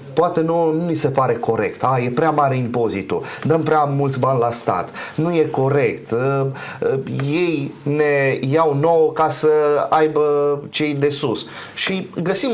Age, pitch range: 30-49, 130-170 Hz